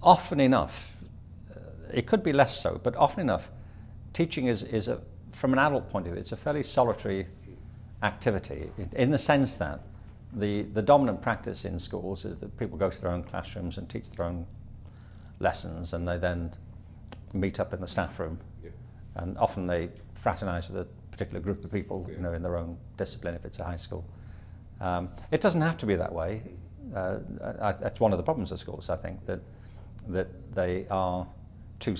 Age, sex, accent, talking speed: 50-69, male, British, 190 wpm